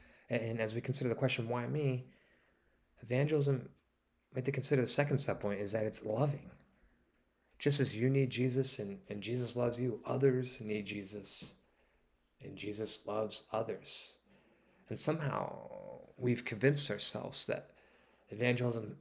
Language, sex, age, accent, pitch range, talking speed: English, male, 20-39, American, 100-130 Hz, 140 wpm